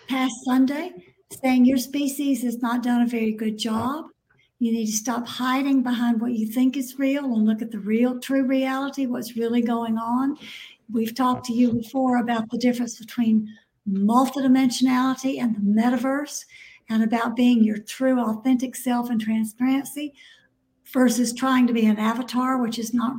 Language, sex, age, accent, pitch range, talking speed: English, female, 60-79, American, 230-270 Hz, 170 wpm